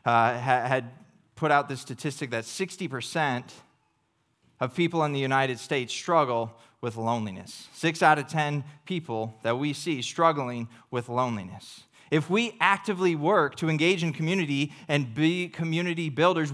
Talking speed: 145 wpm